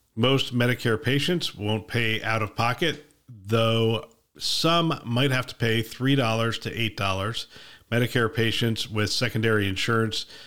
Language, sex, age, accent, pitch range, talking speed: English, male, 50-69, American, 105-125 Hz, 125 wpm